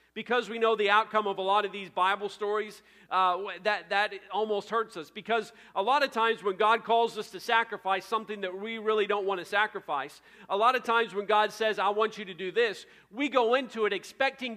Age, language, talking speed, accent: 40-59, English, 225 wpm, American